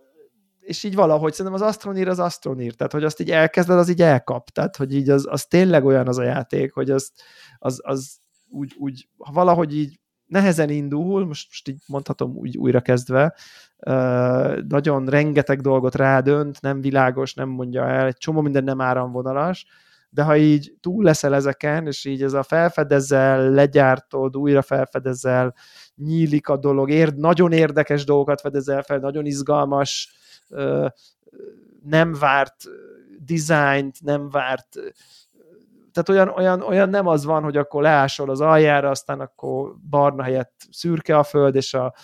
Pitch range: 135-160 Hz